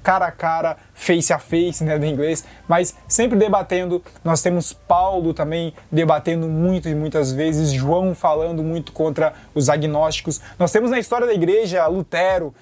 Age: 20-39